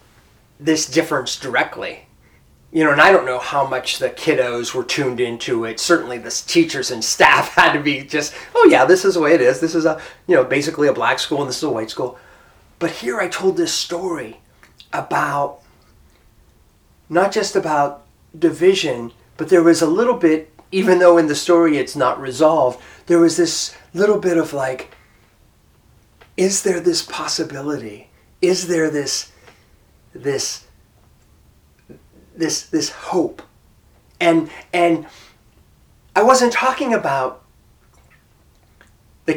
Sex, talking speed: male, 150 wpm